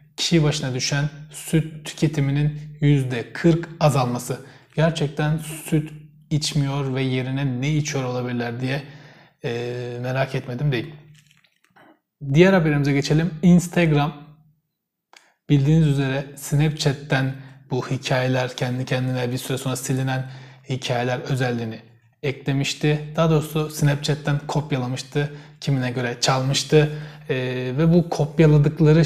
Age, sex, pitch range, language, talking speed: 30-49, male, 130-155 Hz, Turkish, 100 wpm